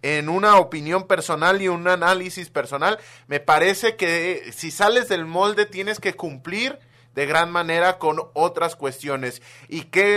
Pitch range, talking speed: 145-190 Hz, 155 wpm